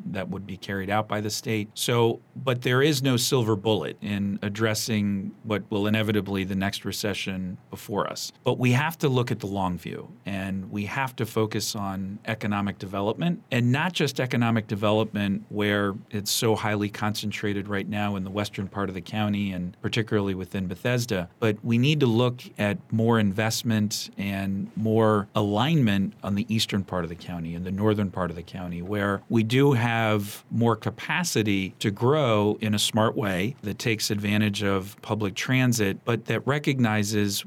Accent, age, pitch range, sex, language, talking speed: American, 40-59, 100-115 Hz, male, English, 180 wpm